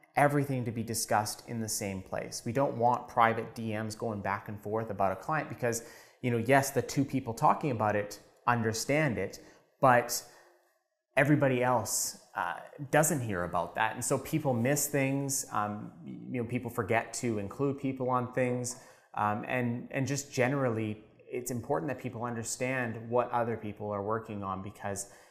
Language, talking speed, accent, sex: English, 170 wpm, American, male